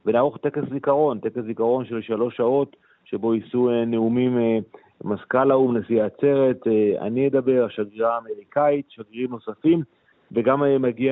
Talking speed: 125 wpm